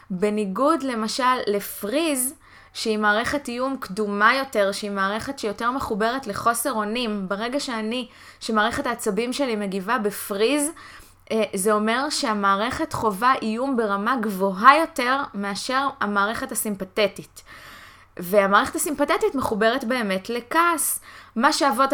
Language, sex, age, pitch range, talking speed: Hebrew, female, 20-39, 205-270 Hz, 105 wpm